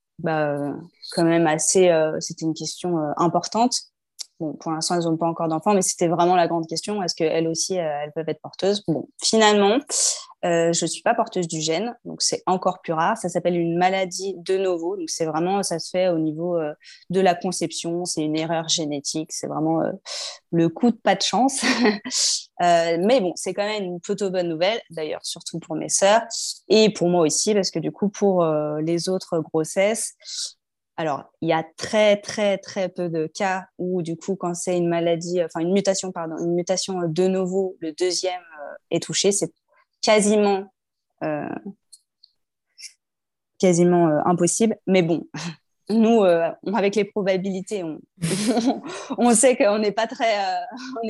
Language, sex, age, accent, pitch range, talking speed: French, female, 20-39, French, 165-200 Hz, 180 wpm